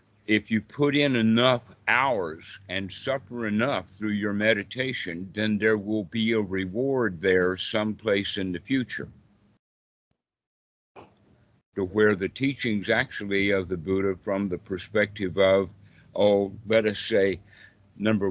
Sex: male